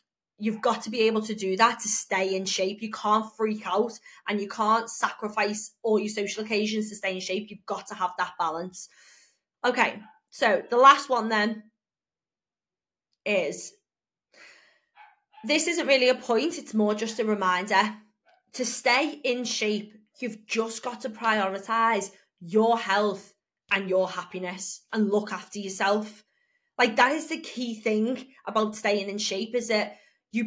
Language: English